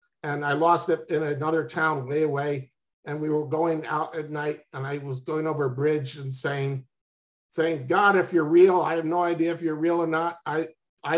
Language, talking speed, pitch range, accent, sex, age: English, 220 wpm, 140-170 Hz, American, male, 50-69